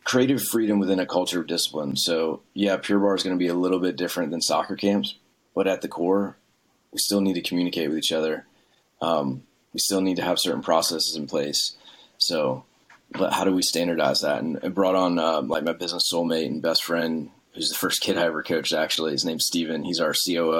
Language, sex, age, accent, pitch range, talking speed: English, male, 30-49, American, 85-95 Hz, 225 wpm